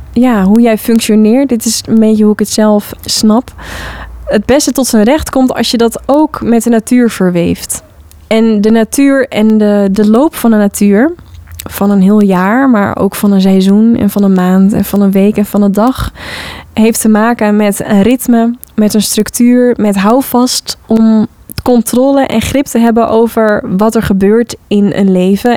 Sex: female